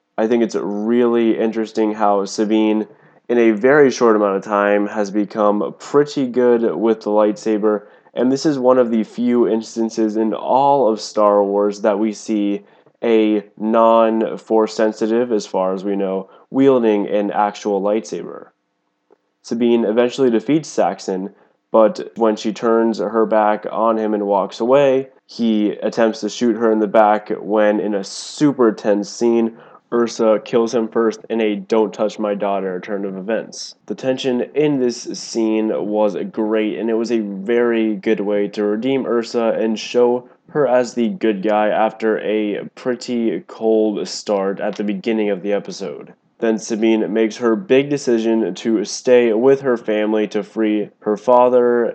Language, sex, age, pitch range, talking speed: English, male, 20-39, 105-120 Hz, 160 wpm